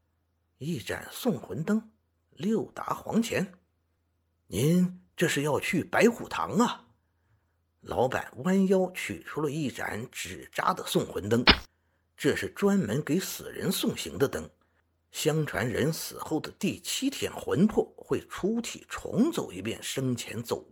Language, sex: Chinese, male